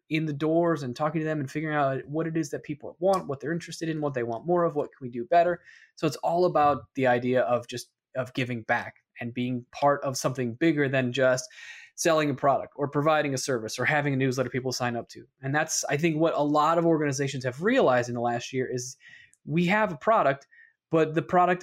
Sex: male